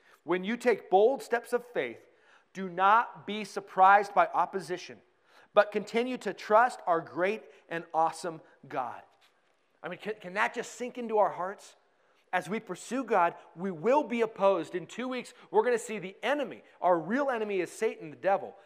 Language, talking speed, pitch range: English, 180 wpm, 175-220 Hz